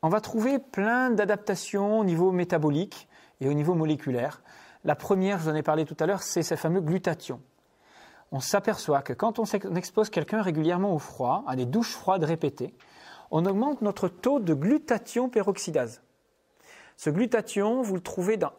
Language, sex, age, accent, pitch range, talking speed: English, male, 40-59, French, 155-220 Hz, 175 wpm